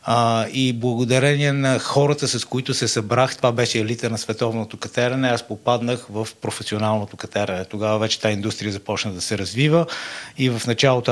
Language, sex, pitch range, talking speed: Bulgarian, male, 110-130 Hz, 165 wpm